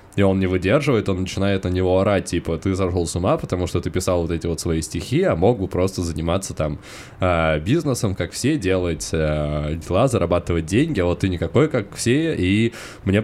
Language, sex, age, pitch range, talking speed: Russian, male, 20-39, 85-100 Hz, 210 wpm